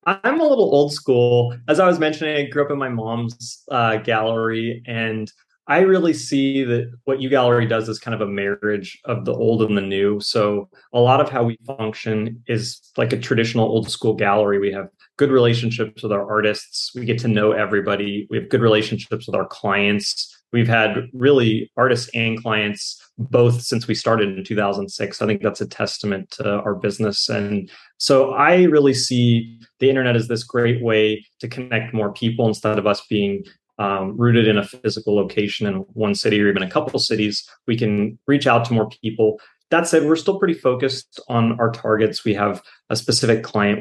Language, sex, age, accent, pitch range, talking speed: English, male, 30-49, American, 105-125 Hz, 195 wpm